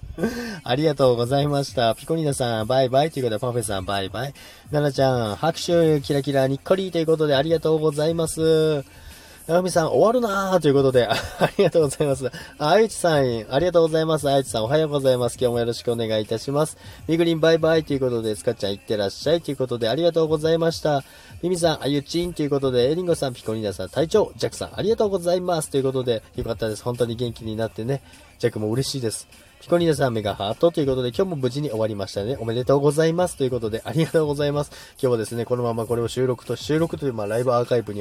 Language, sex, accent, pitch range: Japanese, male, native, 115-160 Hz